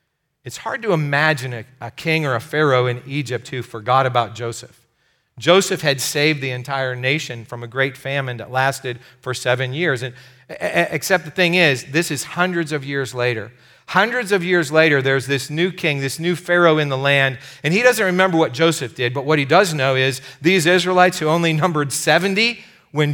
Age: 40-59